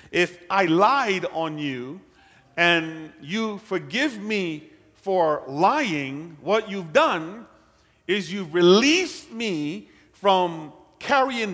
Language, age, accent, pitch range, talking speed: English, 50-69, American, 170-235 Hz, 105 wpm